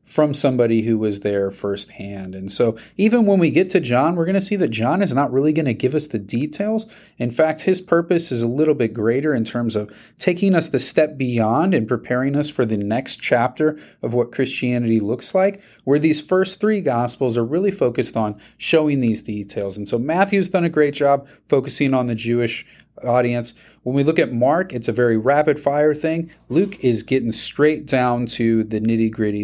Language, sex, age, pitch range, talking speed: English, male, 30-49, 110-160 Hz, 210 wpm